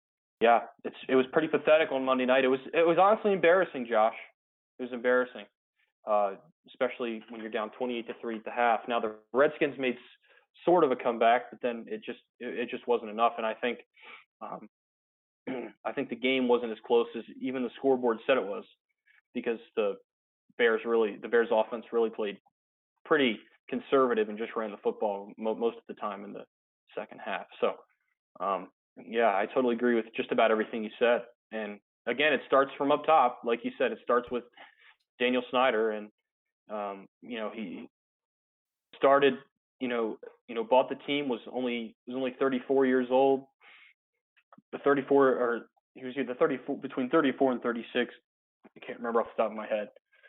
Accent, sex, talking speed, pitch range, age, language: American, male, 185 wpm, 115-135 Hz, 20-39, English